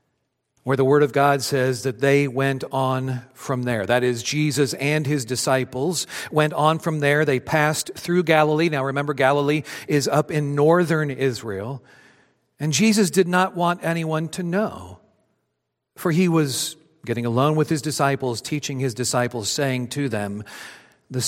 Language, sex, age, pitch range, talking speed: English, male, 50-69, 125-155 Hz, 160 wpm